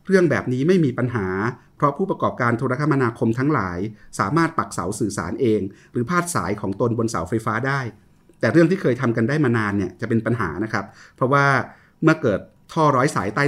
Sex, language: male, Thai